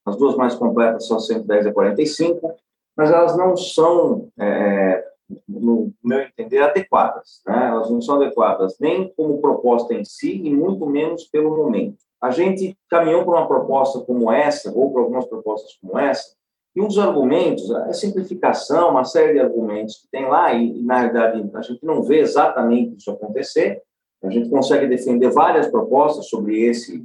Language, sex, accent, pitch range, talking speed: Portuguese, male, Brazilian, 125-210 Hz, 170 wpm